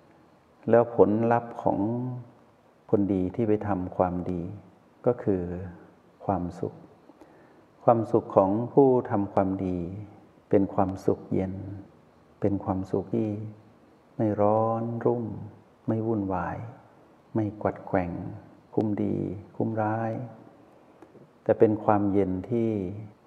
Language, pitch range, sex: Thai, 95-110 Hz, male